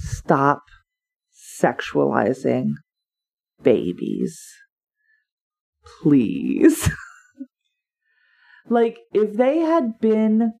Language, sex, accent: English, female, American